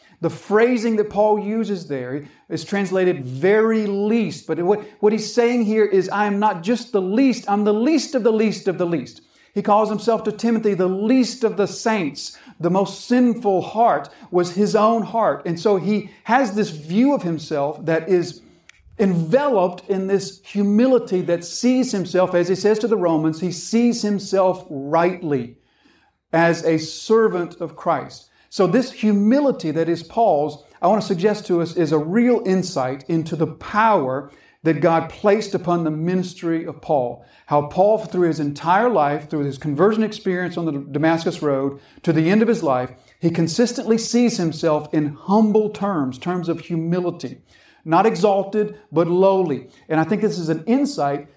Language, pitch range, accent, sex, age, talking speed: English, 165-215 Hz, American, male, 50-69, 175 wpm